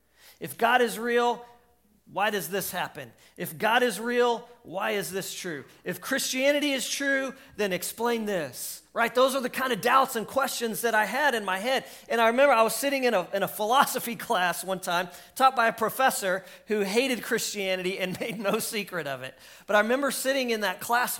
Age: 40-59